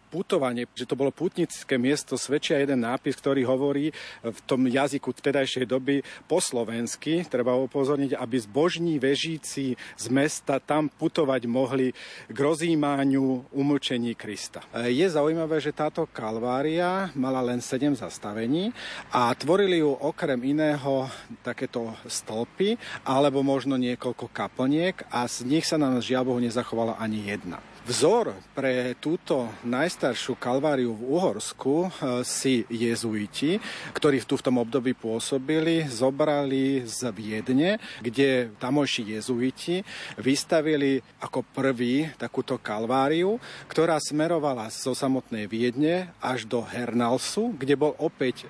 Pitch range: 120-150 Hz